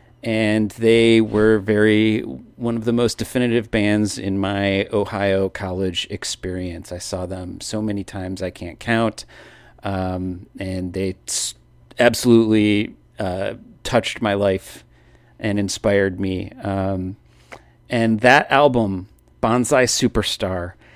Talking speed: 115 wpm